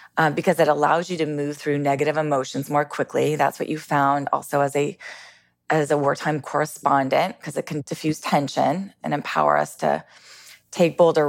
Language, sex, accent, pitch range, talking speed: English, female, American, 145-170 Hz, 180 wpm